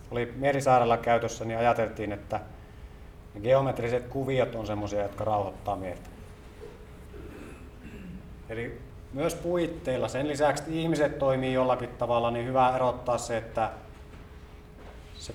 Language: Finnish